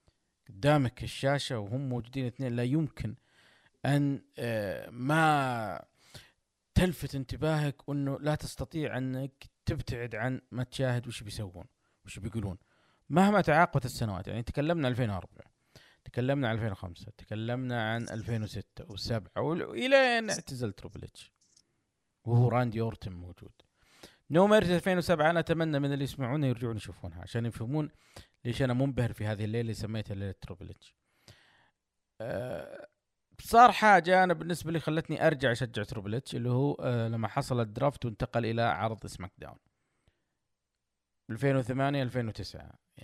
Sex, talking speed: male, 115 wpm